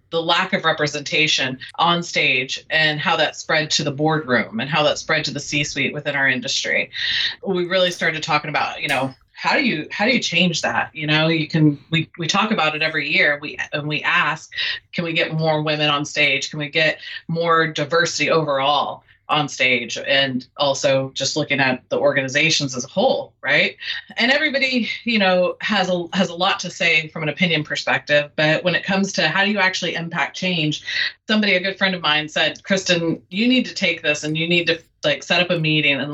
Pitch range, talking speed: 150-185 Hz, 215 wpm